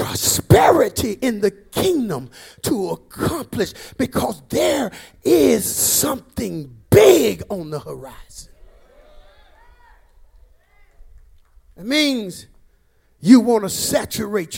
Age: 50-69